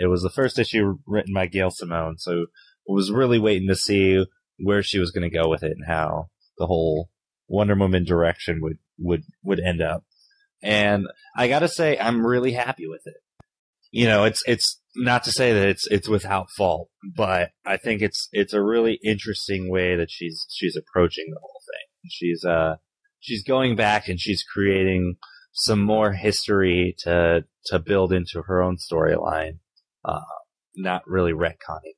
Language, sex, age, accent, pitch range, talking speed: English, male, 20-39, American, 85-105 Hz, 180 wpm